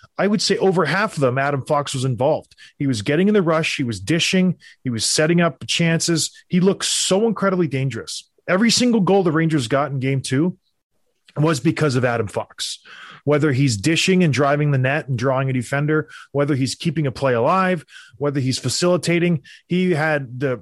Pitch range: 140-185 Hz